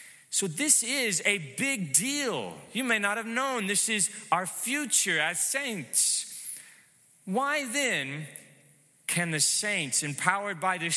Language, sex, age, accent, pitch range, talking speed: English, male, 20-39, American, 155-220 Hz, 135 wpm